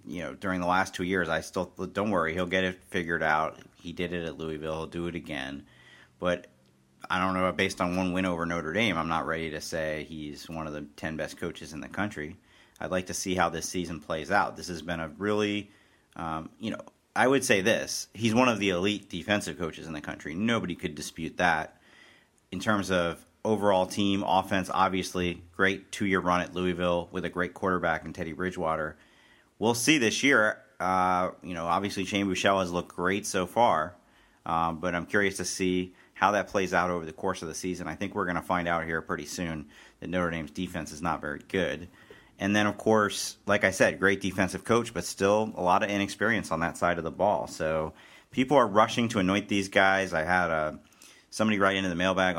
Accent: American